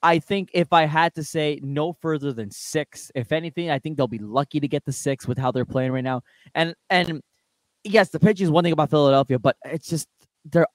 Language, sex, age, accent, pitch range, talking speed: English, male, 20-39, American, 125-160 Hz, 235 wpm